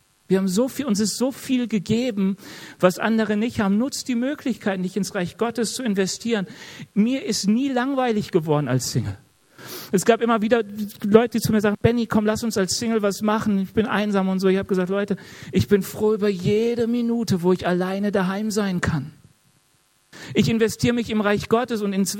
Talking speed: 205 wpm